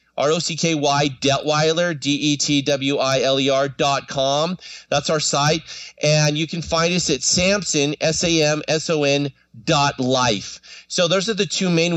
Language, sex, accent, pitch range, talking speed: English, male, American, 140-170 Hz, 120 wpm